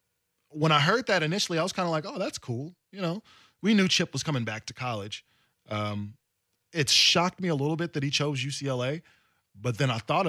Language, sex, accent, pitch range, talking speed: English, male, American, 110-145 Hz, 220 wpm